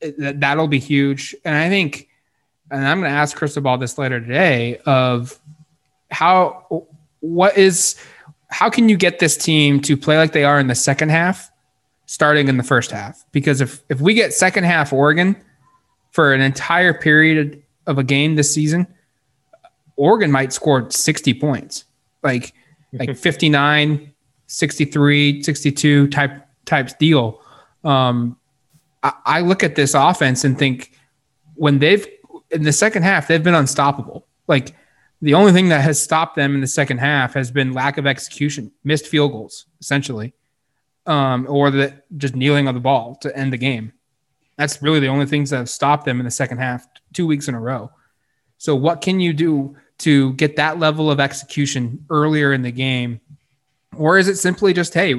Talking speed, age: 175 wpm, 20-39